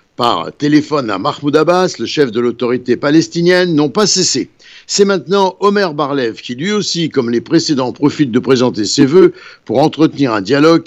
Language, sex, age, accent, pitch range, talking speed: Italian, male, 60-79, French, 120-160 Hz, 175 wpm